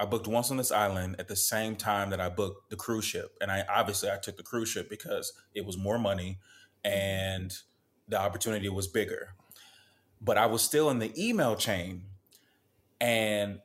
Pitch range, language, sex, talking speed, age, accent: 95-115 Hz, English, male, 190 wpm, 20-39, American